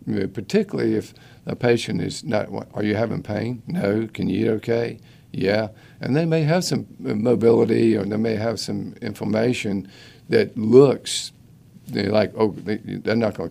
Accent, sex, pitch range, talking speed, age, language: American, male, 105-125 Hz, 180 wpm, 50-69, English